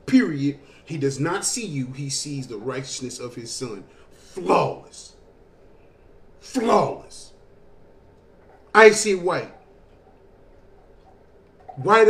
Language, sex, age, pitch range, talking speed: English, male, 30-49, 145-205 Hz, 90 wpm